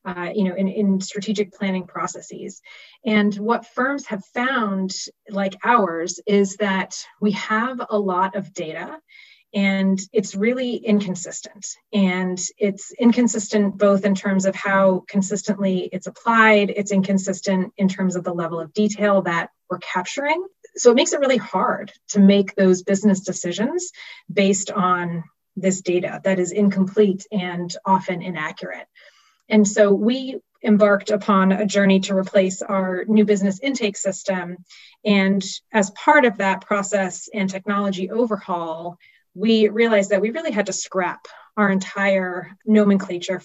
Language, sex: English, female